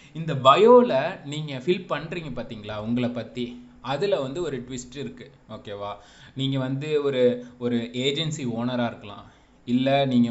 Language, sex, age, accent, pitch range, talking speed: English, male, 20-39, Indian, 115-140 Hz, 115 wpm